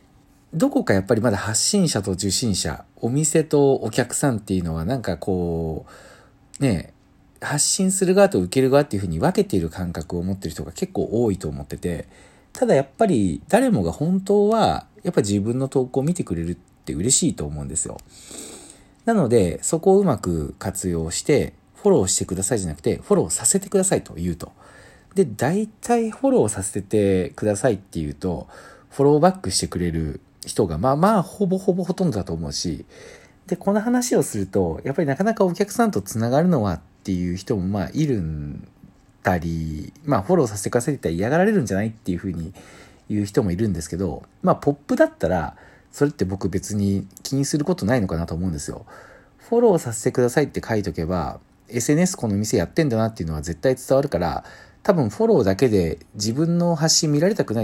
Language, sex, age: Japanese, male, 40-59